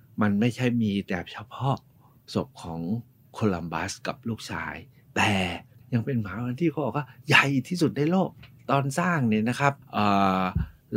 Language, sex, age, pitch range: Thai, male, 60-79, 105-135 Hz